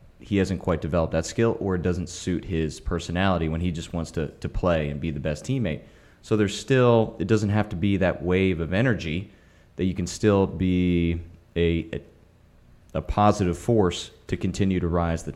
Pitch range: 85-105 Hz